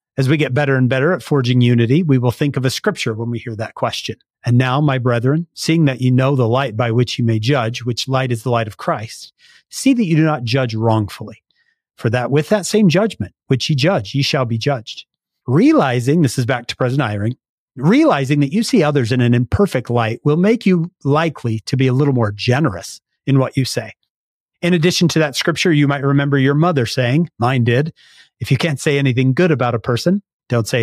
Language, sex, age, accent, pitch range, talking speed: English, male, 40-59, American, 120-155 Hz, 225 wpm